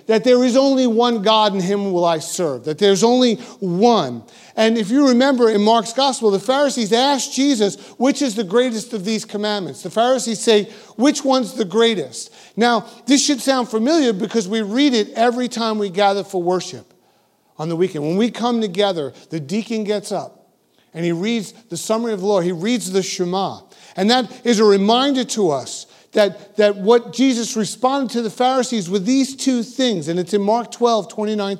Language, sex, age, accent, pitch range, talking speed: English, male, 50-69, American, 185-235 Hz, 195 wpm